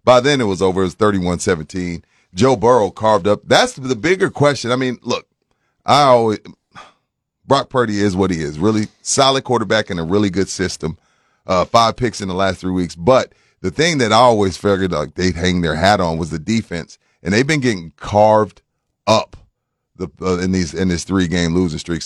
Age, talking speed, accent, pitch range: 30-49, 205 wpm, American, 95-140 Hz